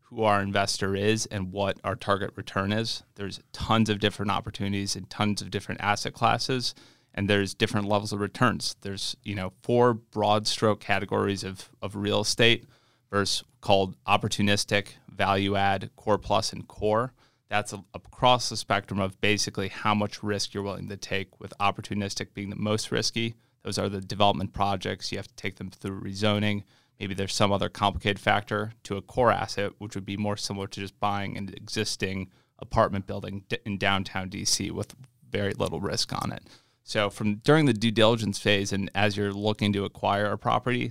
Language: English